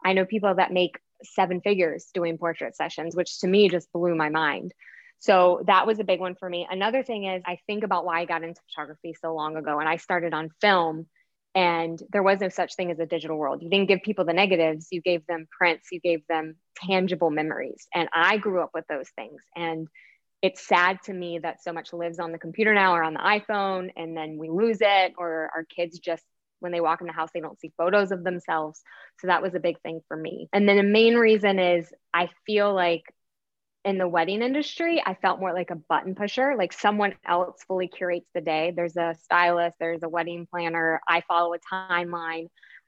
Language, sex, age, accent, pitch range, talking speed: English, female, 20-39, American, 165-195 Hz, 225 wpm